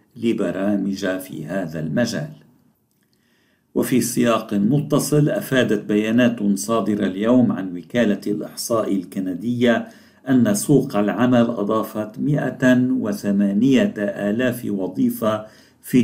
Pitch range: 100-125 Hz